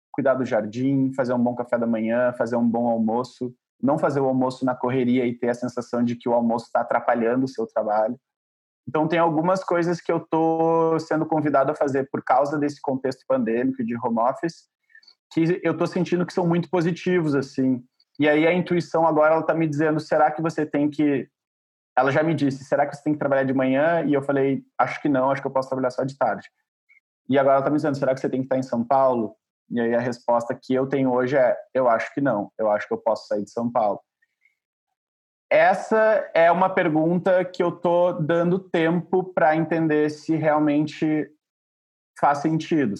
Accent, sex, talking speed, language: Brazilian, male, 210 wpm, Portuguese